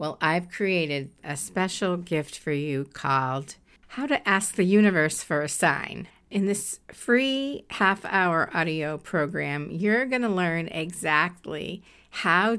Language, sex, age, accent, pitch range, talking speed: English, female, 50-69, American, 150-205 Hz, 140 wpm